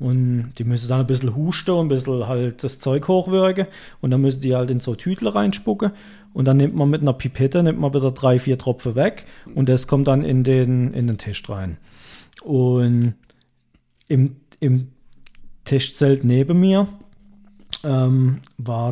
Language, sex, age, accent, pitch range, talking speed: German, male, 40-59, German, 125-160 Hz, 170 wpm